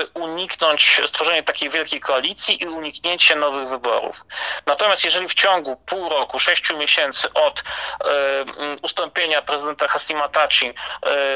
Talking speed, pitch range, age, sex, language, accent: 110 wpm, 135-160 Hz, 30-49, male, Polish, native